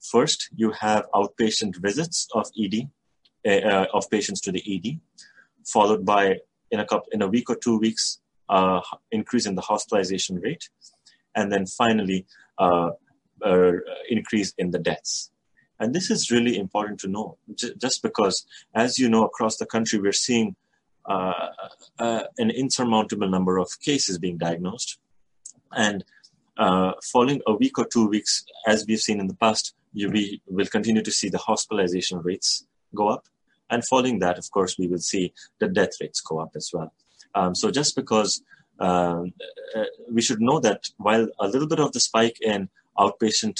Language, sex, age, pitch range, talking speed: English, male, 30-49, 90-115 Hz, 170 wpm